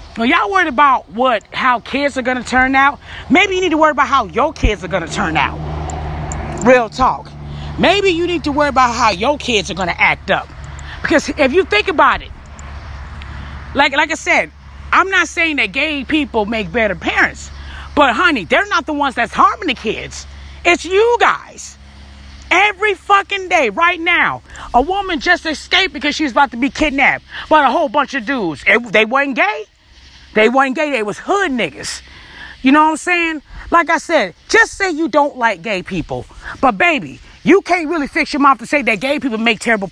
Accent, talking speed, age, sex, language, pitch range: American, 205 wpm, 30-49, female, English, 235-335 Hz